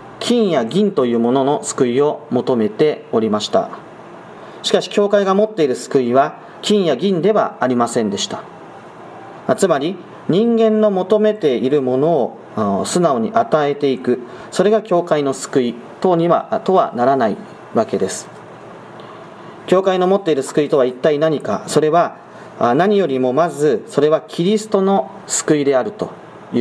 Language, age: Japanese, 40-59